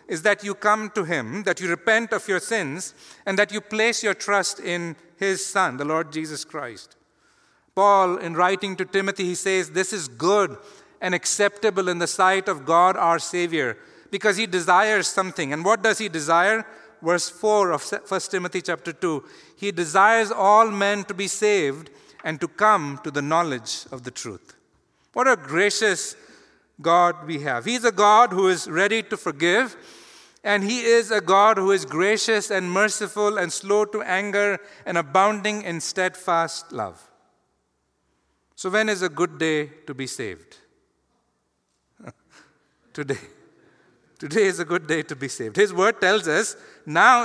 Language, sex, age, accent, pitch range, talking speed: English, male, 50-69, Indian, 160-205 Hz, 170 wpm